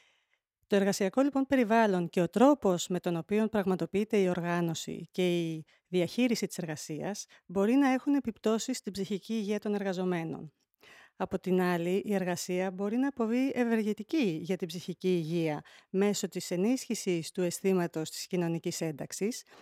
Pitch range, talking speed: 180-230 Hz, 145 wpm